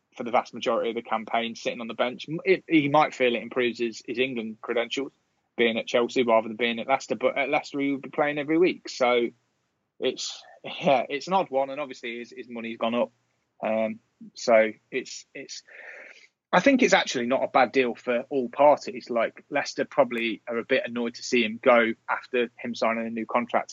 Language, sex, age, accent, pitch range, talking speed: English, male, 20-39, British, 115-130 Hz, 210 wpm